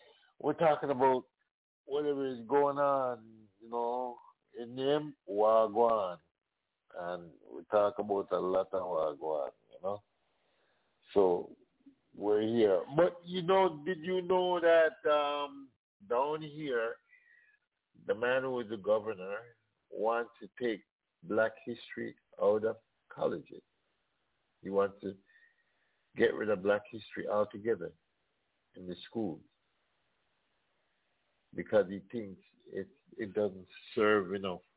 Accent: American